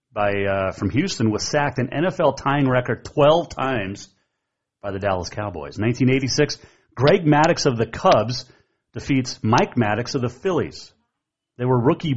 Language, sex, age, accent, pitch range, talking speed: English, male, 30-49, American, 100-130 Hz, 155 wpm